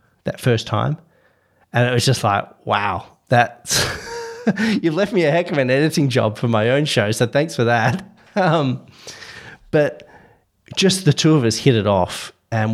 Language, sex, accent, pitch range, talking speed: English, male, Australian, 105-135 Hz, 180 wpm